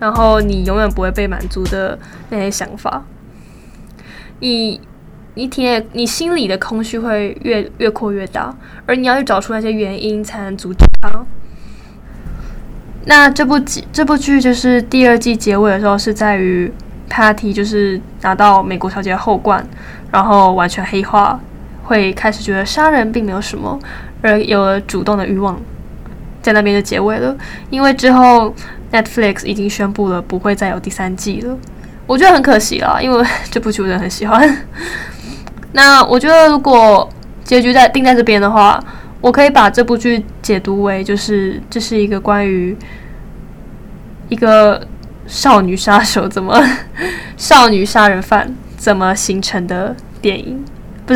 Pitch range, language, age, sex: 195-240 Hz, Chinese, 10-29, female